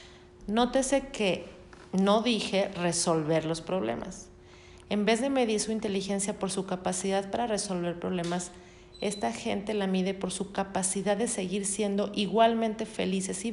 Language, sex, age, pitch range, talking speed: Spanish, female, 40-59, 180-205 Hz, 140 wpm